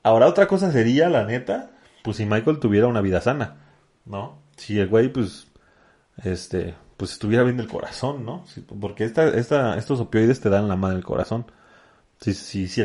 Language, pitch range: Spanish, 100-120 Hz